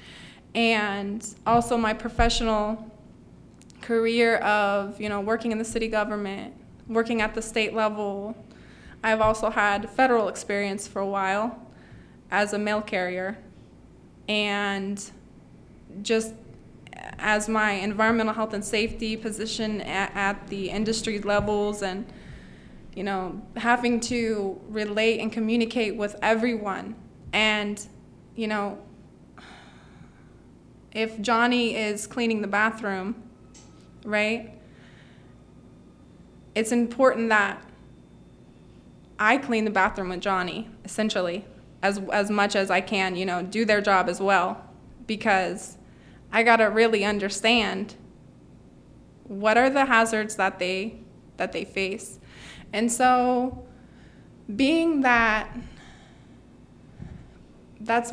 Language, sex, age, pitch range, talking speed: English, female, 20-39, 200-225 Hz, 110 wpm